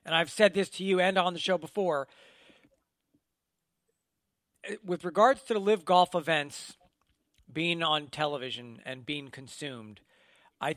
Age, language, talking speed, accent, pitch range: 40-59, English, 140 wpm, American, 160-210 Hz